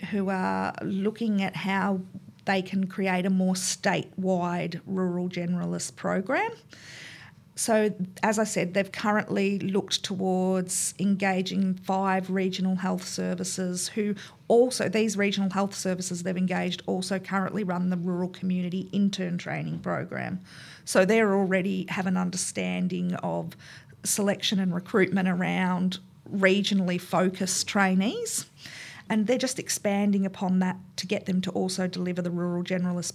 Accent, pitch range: Australian, 175-195 Hz